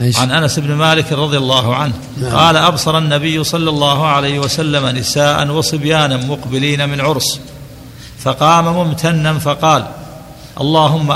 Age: 50-69